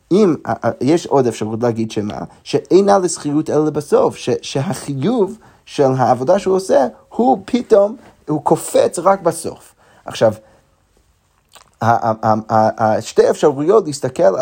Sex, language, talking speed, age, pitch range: male, Hebrew, 110 wpm, 30-49, 130-195 Hz